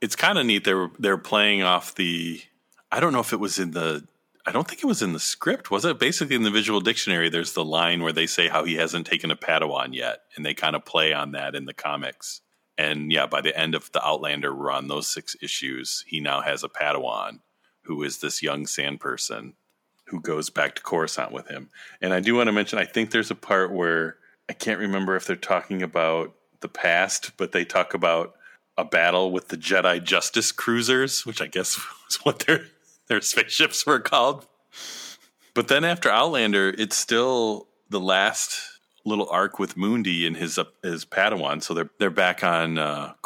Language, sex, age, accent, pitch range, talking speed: English, male, 40-59, American, 85-100 Hz, 210 wpm